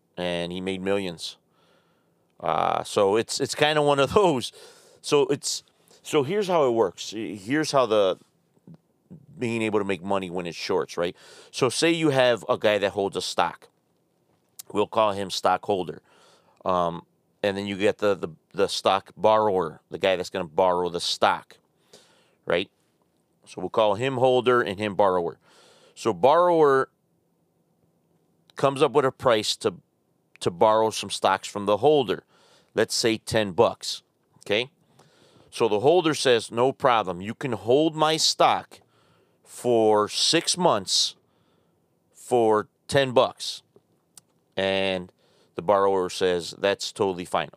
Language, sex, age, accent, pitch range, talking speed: English, male, 30-49, American, 100-150 Hz, 150 wpm